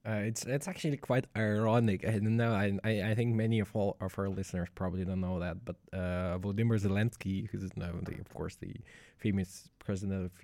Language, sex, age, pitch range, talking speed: English, male, 20-39, 90-110 Hz, 195 wpm